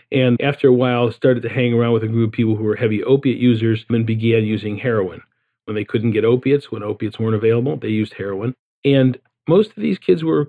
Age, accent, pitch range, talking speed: 50-69, American, 110-130 Hz, 230 wpm